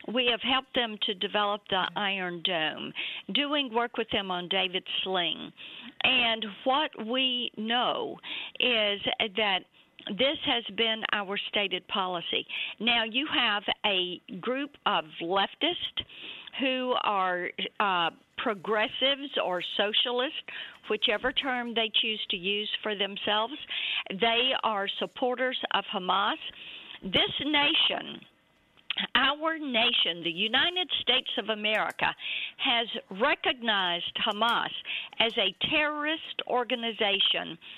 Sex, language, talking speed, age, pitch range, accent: female, English, 110 wpm, 50-69, 200-255 Hz, American